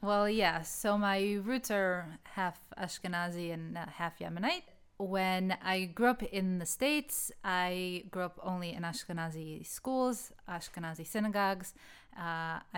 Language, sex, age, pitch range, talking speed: English, female, 20-39, 170-205 Hz, 135 wpm